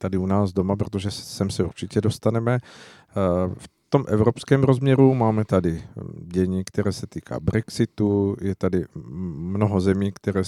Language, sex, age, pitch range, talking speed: Czech, male, 50-69, 95-105 Hz, 145 wpm